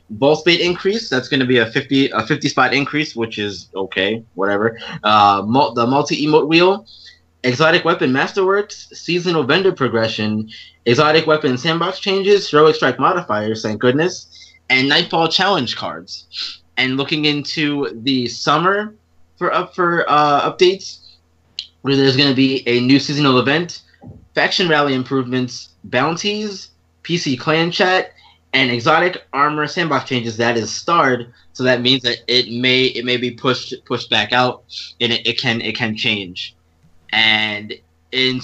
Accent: American